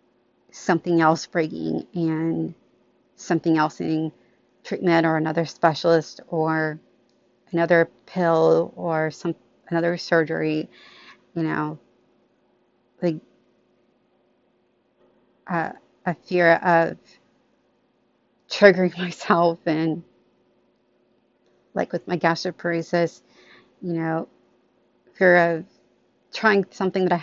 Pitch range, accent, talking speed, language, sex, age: 120-175 Hz, American, 90 wpm, English, female, 40-59